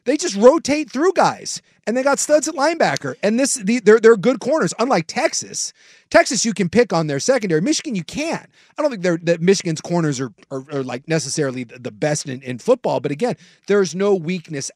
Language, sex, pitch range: English, male, 155-210 Hz